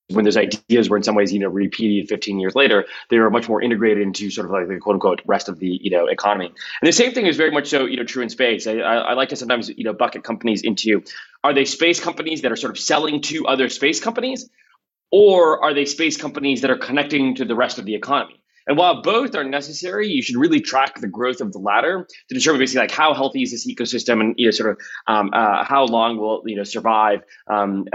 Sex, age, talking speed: male, 20-39, 245 wpm